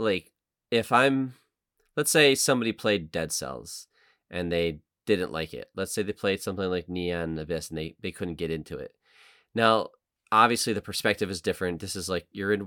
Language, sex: English, male